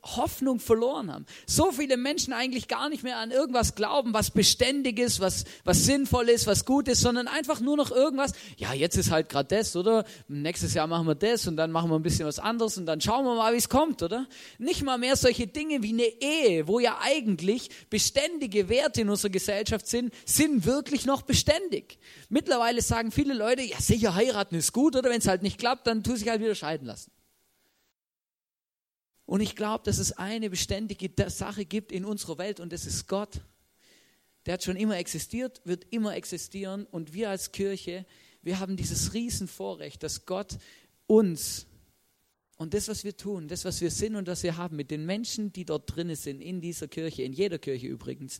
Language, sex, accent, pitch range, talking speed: German, male, German, 160-240 Hz, 200 wpm